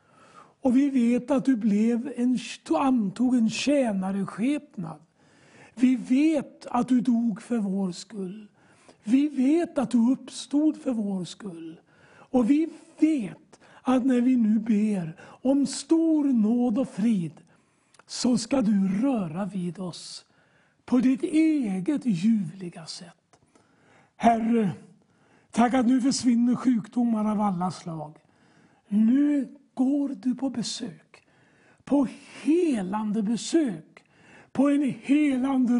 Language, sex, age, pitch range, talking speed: English, male, 60-79, 195-265 Hz, 120 wpm